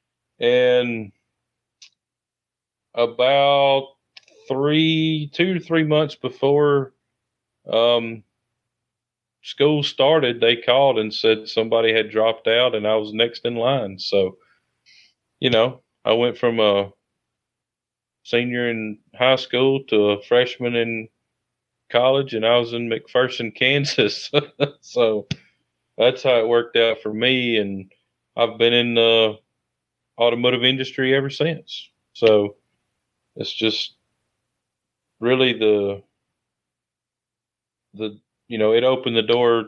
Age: 30-49